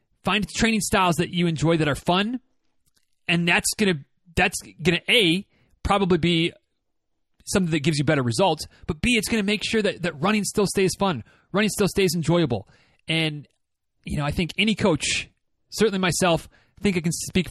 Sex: male